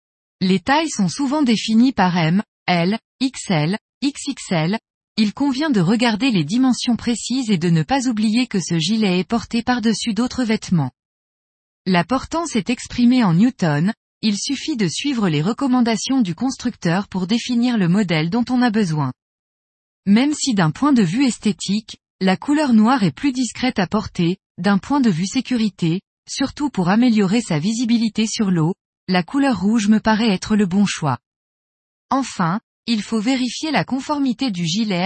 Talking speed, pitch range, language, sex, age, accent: 165 wpm, 185-245 Hz, French, female, 20-39, French